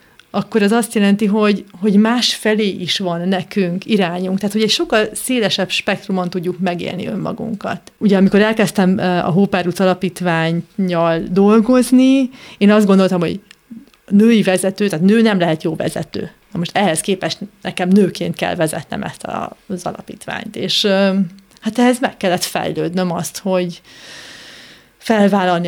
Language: Hungarian